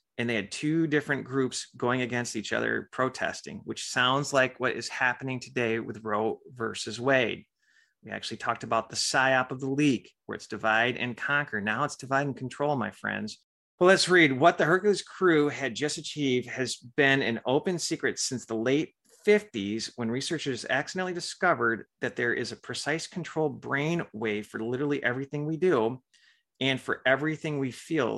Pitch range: 120-150 Hz